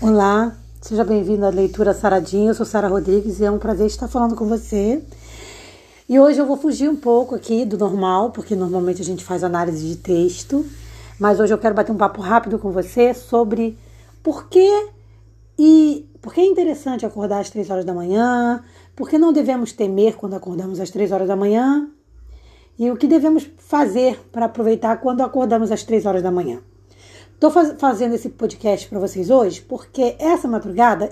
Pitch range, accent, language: 195-275 Hz, Brazilian, Portuguese